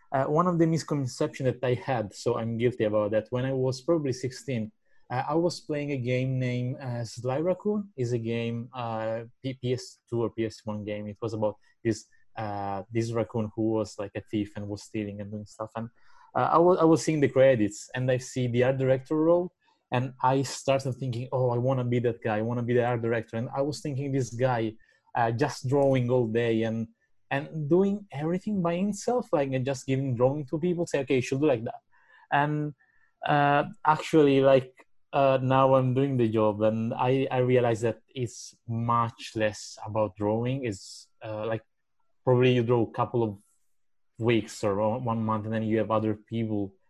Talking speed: 200 wpm